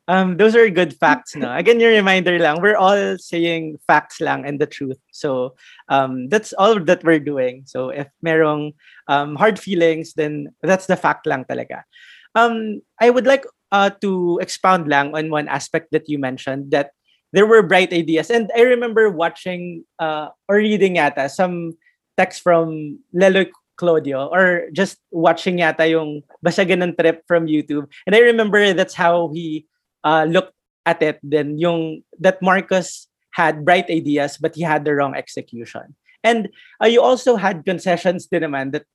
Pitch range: 150-195 Hz